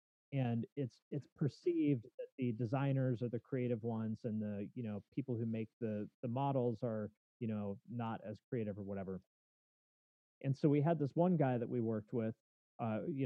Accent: American